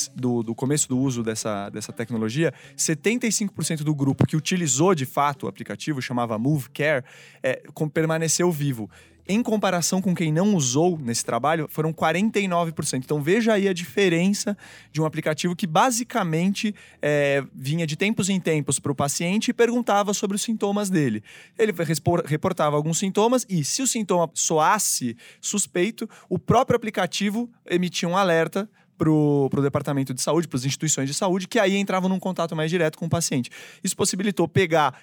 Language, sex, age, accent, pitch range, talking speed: English, male, 20-39, Brazilian, 145-195 Hz, 170 wpm